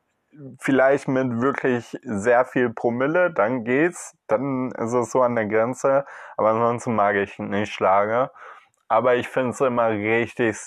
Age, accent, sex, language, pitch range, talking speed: 20-39, German, male, German, 100-125 Hz, 150 wpm